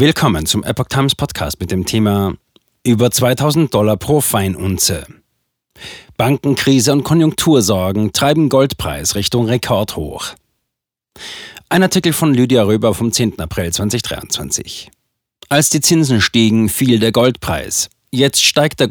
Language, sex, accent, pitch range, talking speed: German, male, German, 105-135 Hz, 125 wpm